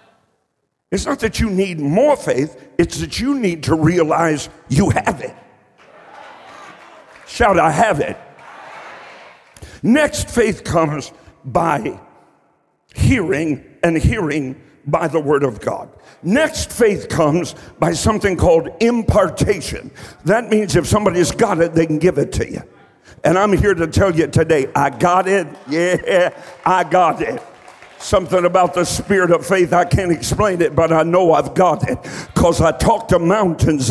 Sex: male